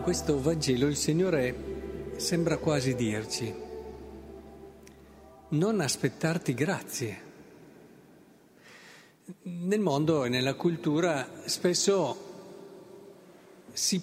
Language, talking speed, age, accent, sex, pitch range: Italian, 75 wpm, 50-69, native, male, 135-180 Hz